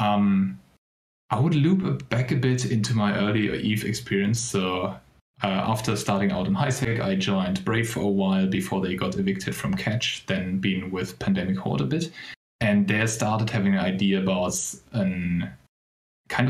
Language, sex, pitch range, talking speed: English, male, 95-120 Hz, 170 wpm